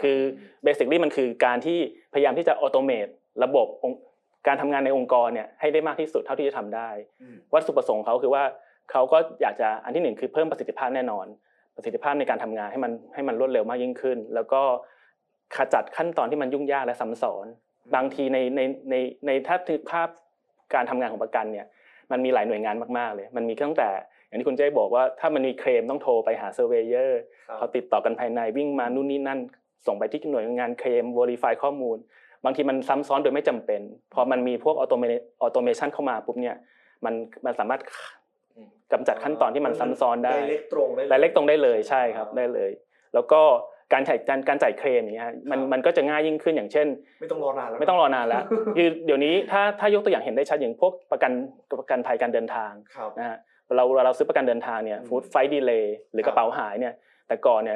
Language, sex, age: Thai, male, 20-39